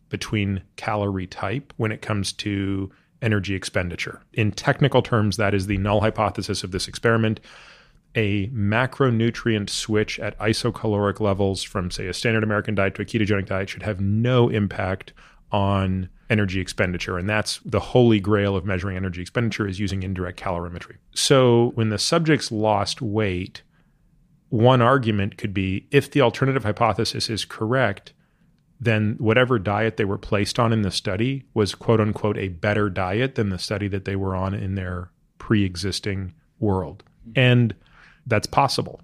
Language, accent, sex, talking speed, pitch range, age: English, American, male, 155 wpm, 100-115 Hz, 30-49